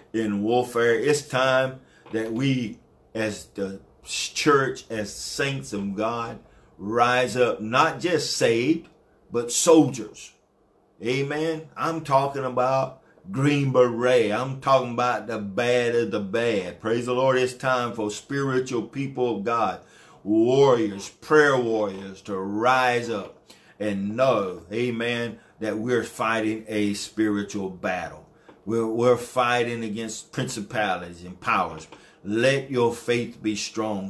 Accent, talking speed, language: American, 125 wpm, English